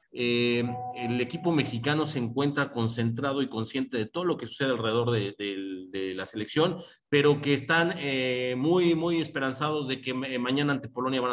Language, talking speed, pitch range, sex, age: Spanish, 175 wpm, 125-160 Hz, male, 40-59